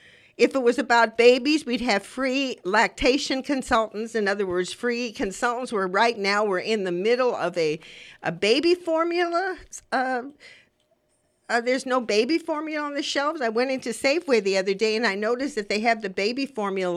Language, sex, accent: English, female, American